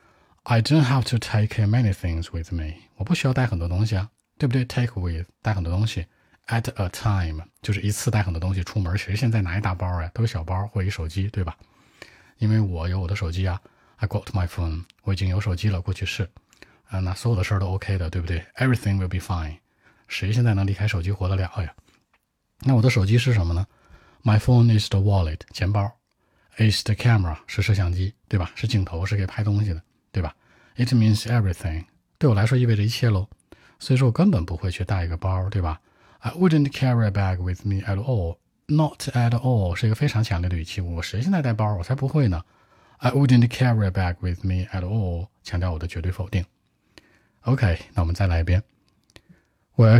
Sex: male